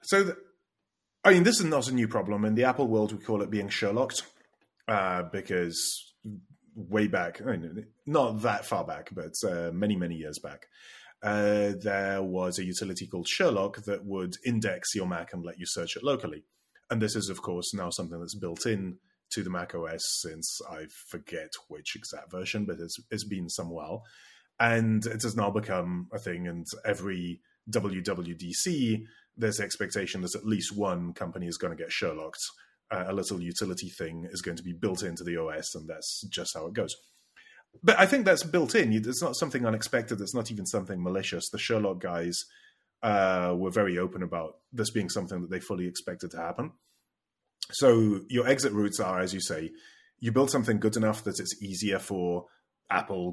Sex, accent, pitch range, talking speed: male, British, 90-110 Hz, 190 wpm